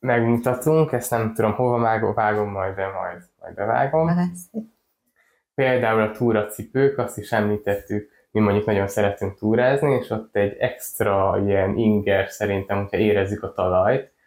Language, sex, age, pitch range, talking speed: Hungarian, male, 20-39, 100-130 Hz, 145 wpm